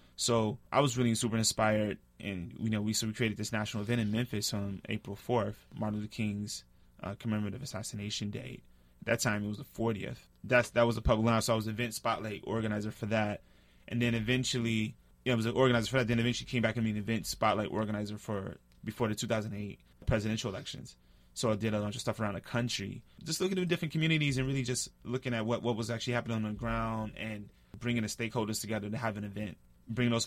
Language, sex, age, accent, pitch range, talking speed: English, male, 20-39, American, 105-120 Hz, 230 wpm